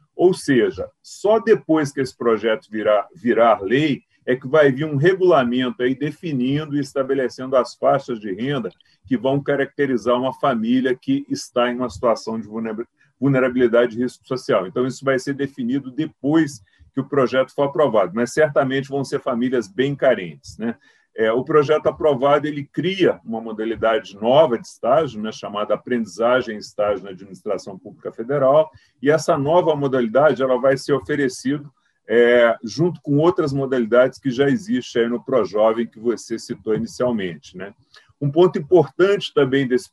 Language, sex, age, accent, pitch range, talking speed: Portuguese, male, 40-59, Brazilian, 120-150 Hz, 150 wpm